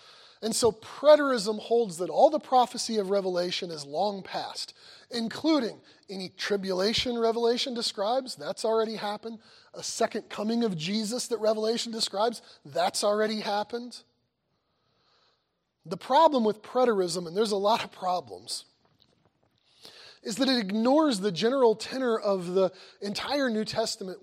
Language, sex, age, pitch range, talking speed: English, male, 30-49, 205-250 Hz, 135 wpm